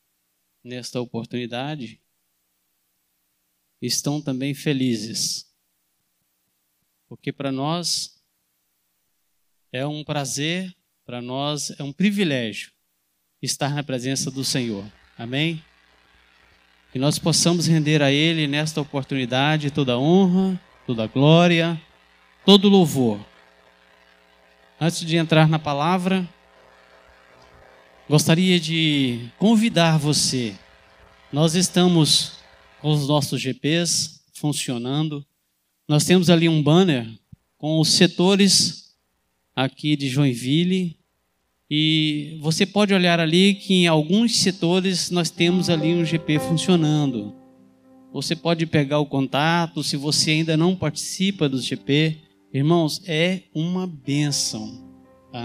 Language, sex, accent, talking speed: Portuguese, male, Brazilian, 105 wpm